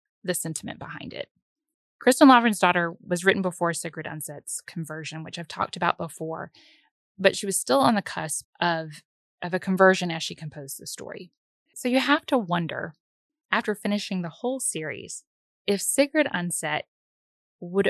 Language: English